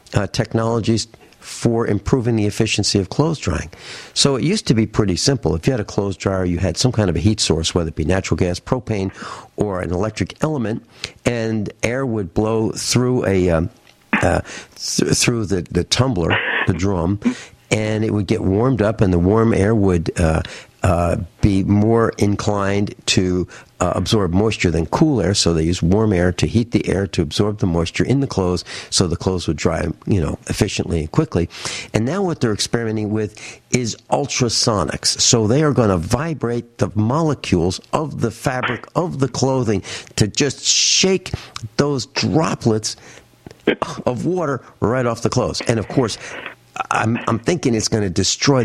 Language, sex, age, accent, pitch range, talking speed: English, male, 60-79, American, 95-120 Hz, 180 wpm